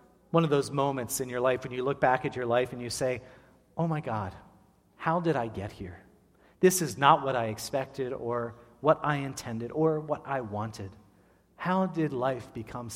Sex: male